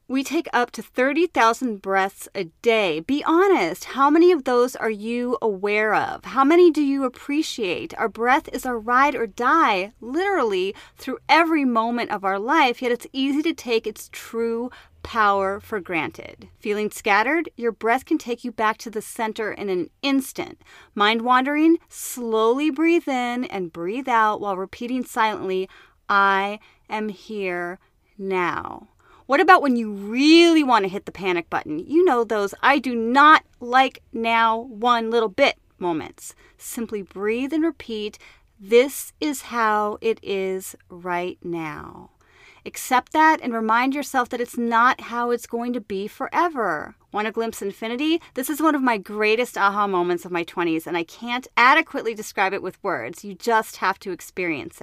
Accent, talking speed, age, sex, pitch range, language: American, 165 wpm, 30-49, female, 205-265 Hz, English